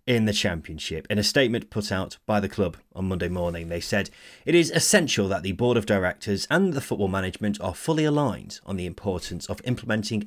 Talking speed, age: 210 wpm, 30-49